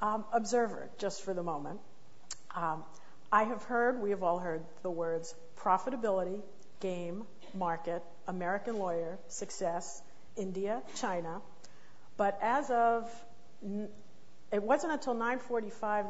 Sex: female